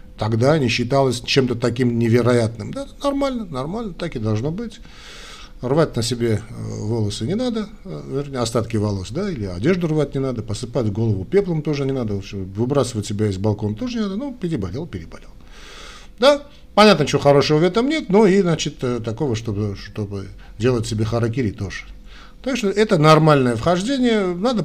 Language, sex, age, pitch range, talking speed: Russian, male, 50-69, 115-180 Hz, 165 wpm